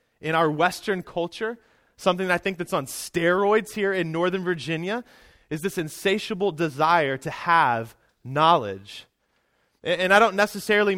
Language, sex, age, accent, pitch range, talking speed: English, male, 20-39, American, 135-185 Hz, 140 wpm